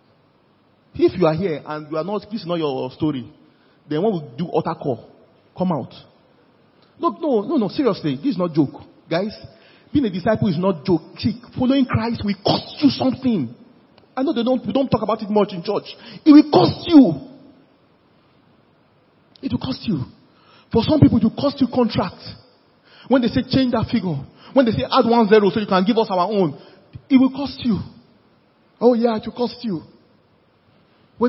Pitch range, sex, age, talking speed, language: 160-235 Hz, male, 40-59, 195 wpm, English